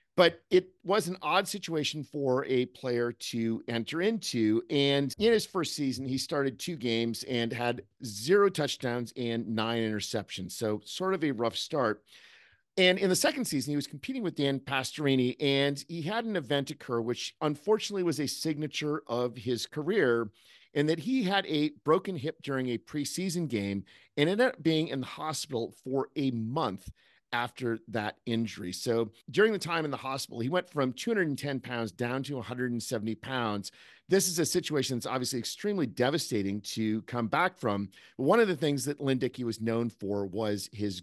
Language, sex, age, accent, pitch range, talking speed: English, male, 50-69, American, 120-165 Hz, 180 wpm